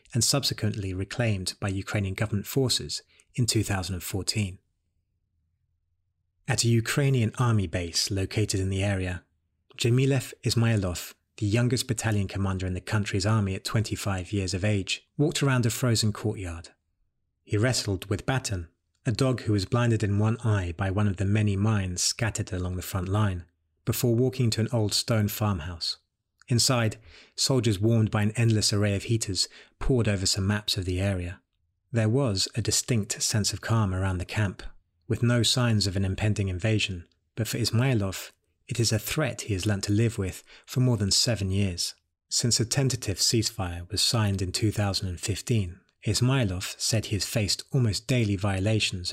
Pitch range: 95-115 Hz